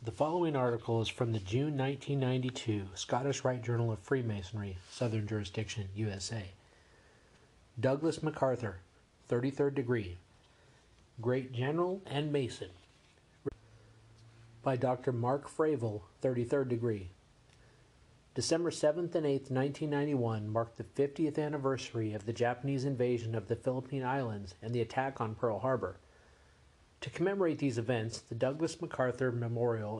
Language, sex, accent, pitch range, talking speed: English, male, American, 110-140 Hz, 120 wpm